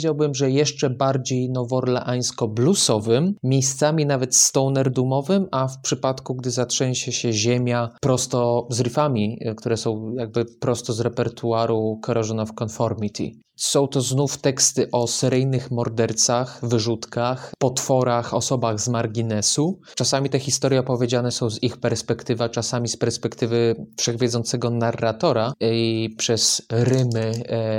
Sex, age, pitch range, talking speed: male, 20-39, 115-130 Hz, 125 wpm